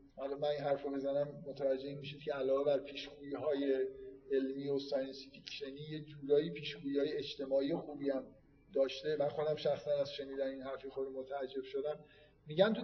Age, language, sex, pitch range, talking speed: 50-69, Persian, male, 140-185 Hz, 160 wpm